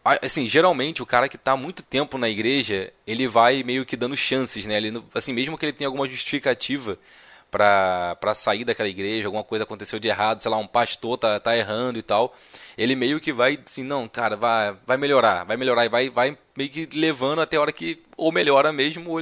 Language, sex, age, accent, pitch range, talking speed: Portuguese, male, 20-39, Brazilian, 110-135 Hz, 215 wpm